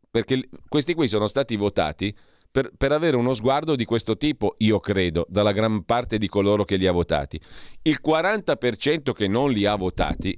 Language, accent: Italian, native